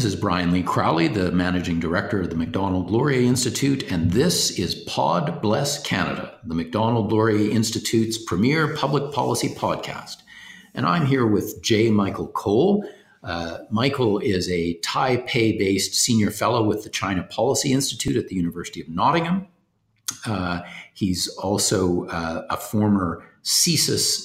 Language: English